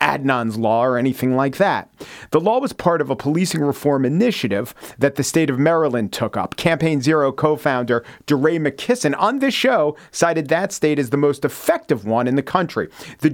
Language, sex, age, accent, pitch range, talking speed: English, male, 40-59, American, 120-160 Hz, 190 wpm